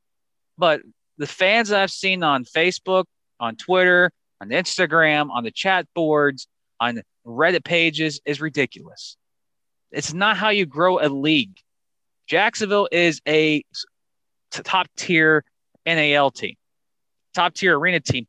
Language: English